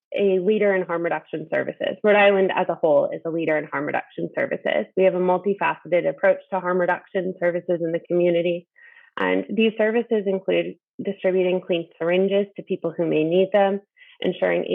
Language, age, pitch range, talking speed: English, 20-39, 175-200 Hz, 180 wpm